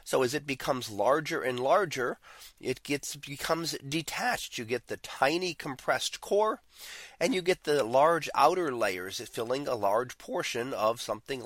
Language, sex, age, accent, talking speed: English, male, 30-49, American, 155 wpm